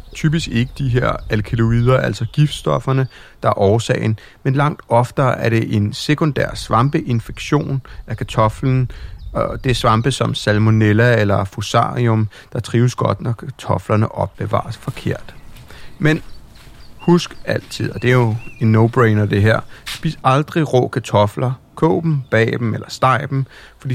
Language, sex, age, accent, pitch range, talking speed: Danish, male, 30-49, native, 110-145 Hz, 145 wpm